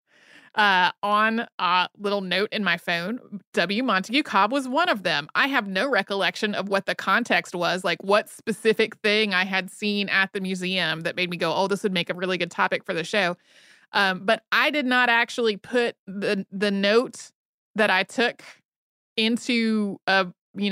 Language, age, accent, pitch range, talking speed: English, 30-49, American, 180-220 Hz, 190 wpm